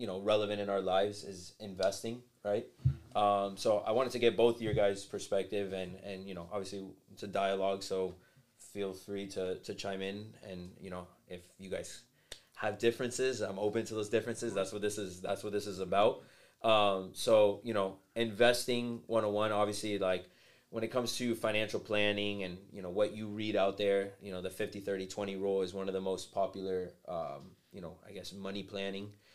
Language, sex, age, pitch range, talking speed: English, male, 20-39, 95-110 Hz, 205 wpm